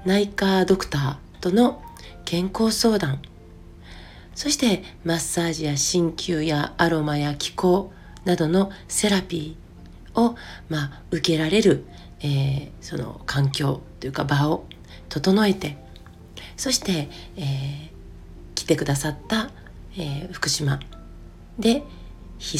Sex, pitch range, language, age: female, 135-180 Hz, Japanese, 40-59